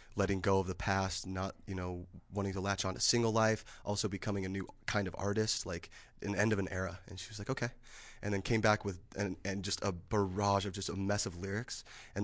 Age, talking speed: 20-39, 240 wpm